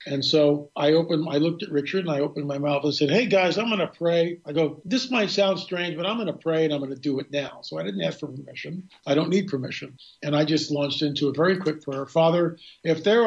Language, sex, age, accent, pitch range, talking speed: English, male, 50-69, American, 145-170 Hz, 275 wpm